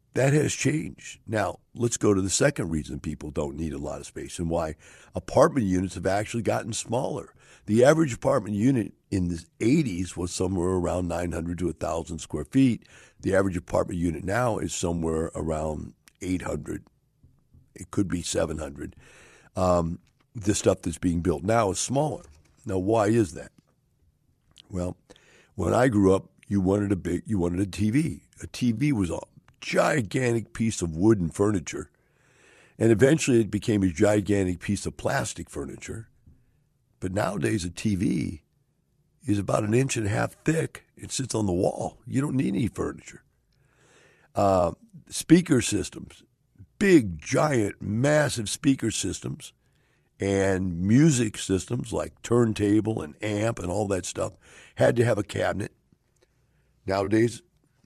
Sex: male